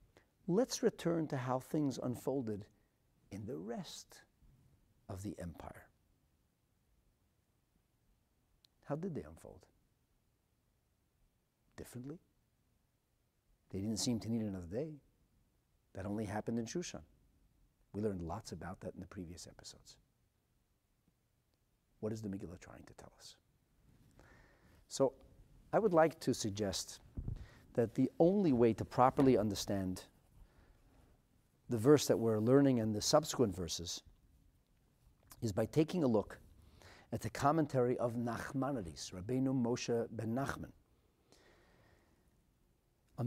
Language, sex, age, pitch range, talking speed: English, male, 50-69, 105-135 Hz, 115 wpm